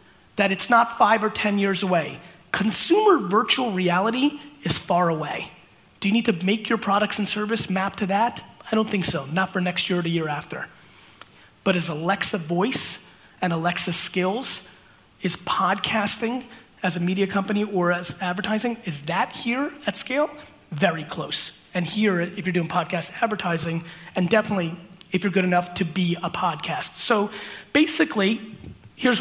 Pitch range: 175-210 Hz